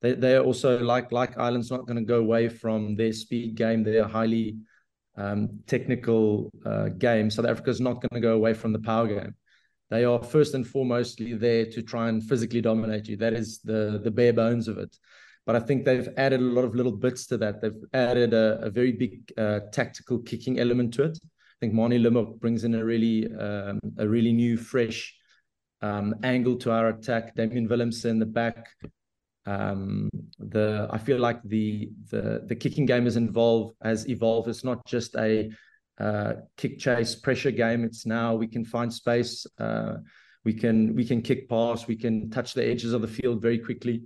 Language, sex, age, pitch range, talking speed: English, male, 30-49, 110-120 Hz, 200 wpm